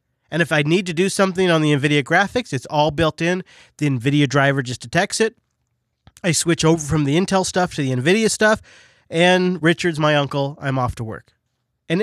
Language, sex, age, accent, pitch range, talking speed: English, male, 30-49, American, 130-170 Hz, 205 wpm